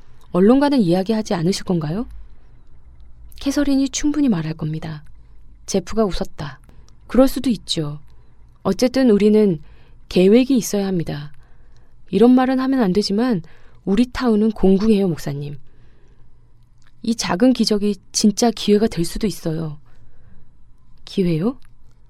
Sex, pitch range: female, 150-225 Hz